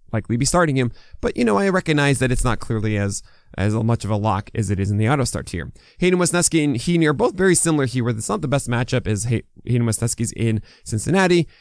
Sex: male